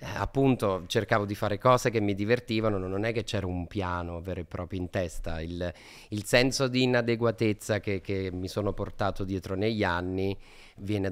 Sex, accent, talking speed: male, native, 180 wpm